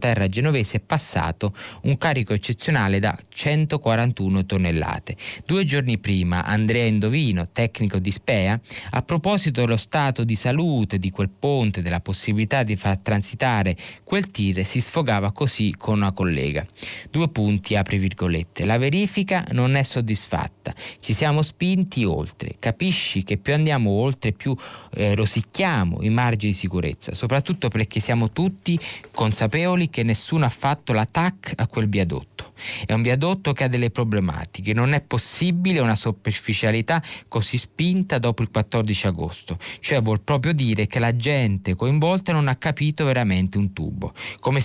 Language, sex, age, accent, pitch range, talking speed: Italian, male, 20-39, native, 100-145 Hz, 150 wpm